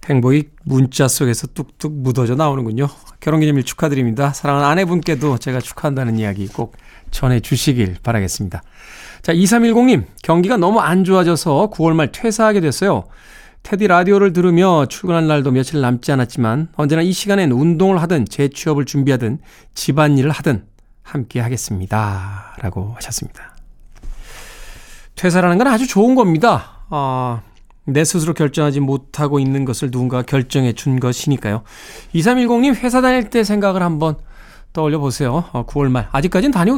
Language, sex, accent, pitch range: Korean, male, native, 125-180 Hz